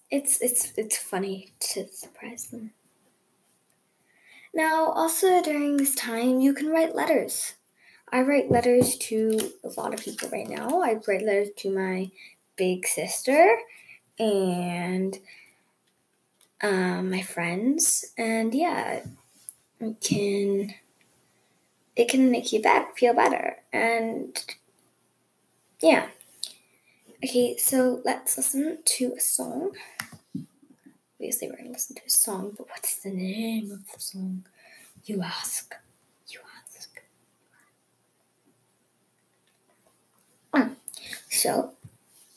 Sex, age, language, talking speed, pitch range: female, 20-39, English, 110 wpm, 200-290 Hz